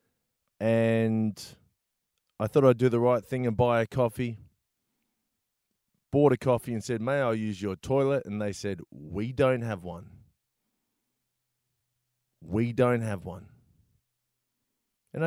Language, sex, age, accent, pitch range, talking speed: English, male, 30-49, Australian, 105-130 Hz, 135 wpm